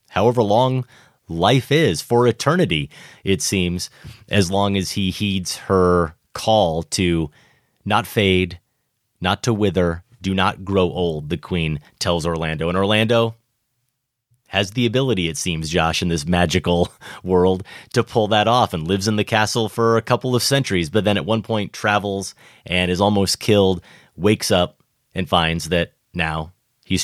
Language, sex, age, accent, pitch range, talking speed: English, male, 30-49, American, 90-115 Hz, 160 wpm